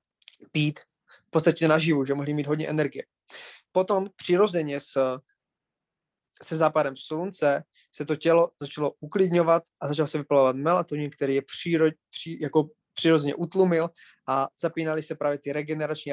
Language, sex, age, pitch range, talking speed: Czech, male, 20-39, 140-165 Hz, 140 wpm